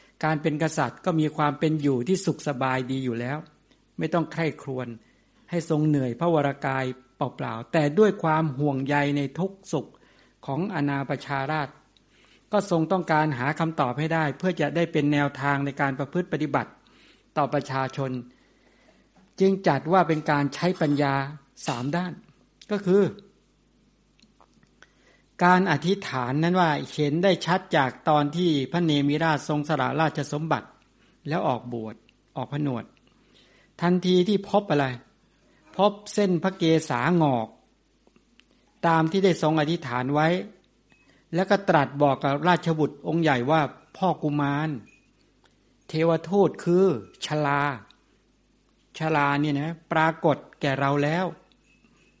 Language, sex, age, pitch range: English, male, 60-79, 140-170 Hz